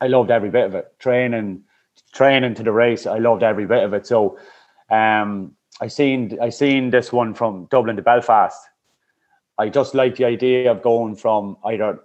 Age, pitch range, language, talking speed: 30-49, 105-120 Hz, English, 190 wpm